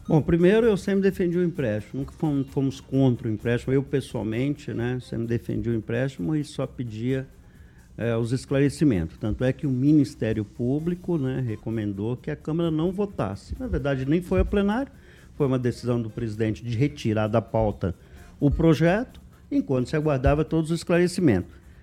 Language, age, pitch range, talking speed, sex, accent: Portuguese, 50-69, 120-190 Hz, 170 wpm, male, Brazilian